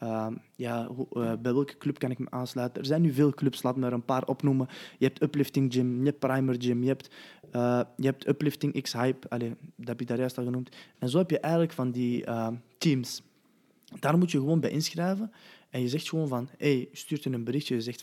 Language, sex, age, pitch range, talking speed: Dutch, male, 20-39, 125-150 Hz, 235 wpm